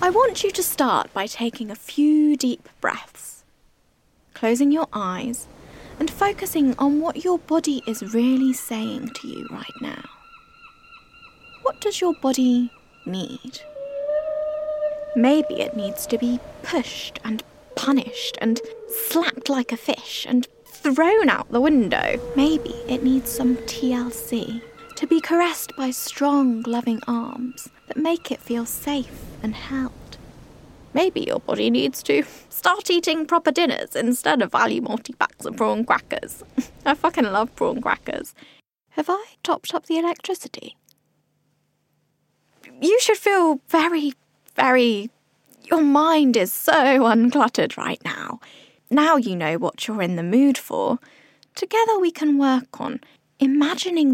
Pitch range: 240-320 Hz